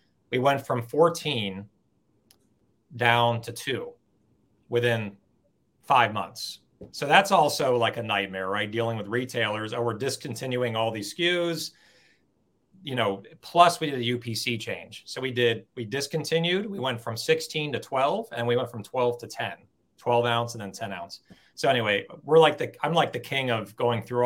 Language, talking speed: English, 175 wpm